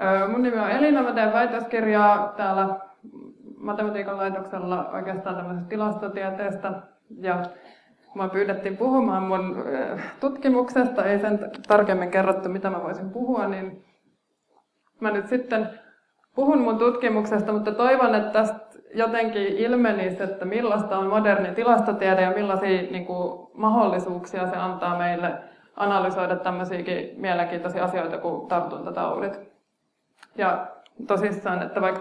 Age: 20-39